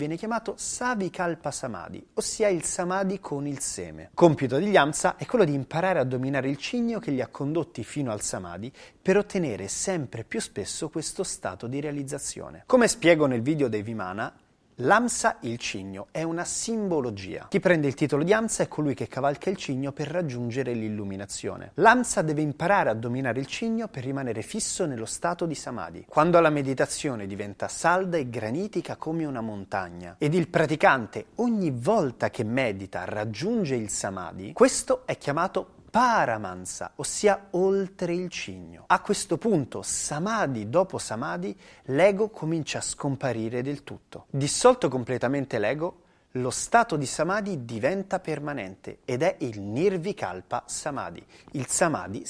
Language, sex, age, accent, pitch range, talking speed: Italian, male, 30-49, native, 120-185 Hz, 155 wpm